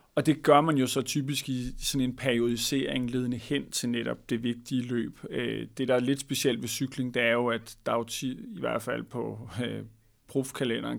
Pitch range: 120-135 Hz